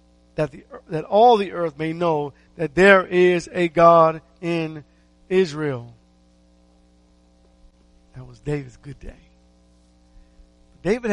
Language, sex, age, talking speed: English, male, 50-69, 115 wpm